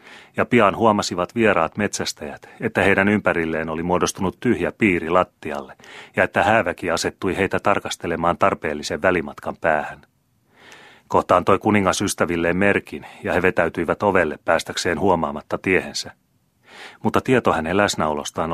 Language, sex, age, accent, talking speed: Finnish, male, 30-49, native, 120 wpm